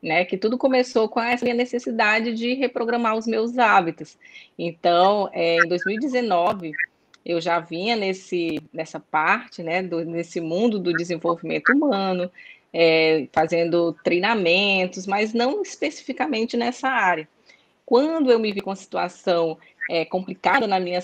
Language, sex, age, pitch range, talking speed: Portuguese, female, 20-39, 180-230 Hz, 135 wpm